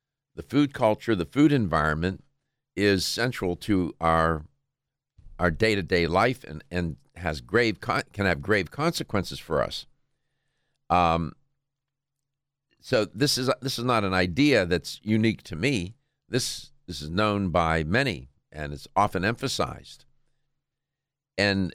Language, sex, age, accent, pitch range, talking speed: English, male, 50-69, American, 90-135 Hz, 130 wpm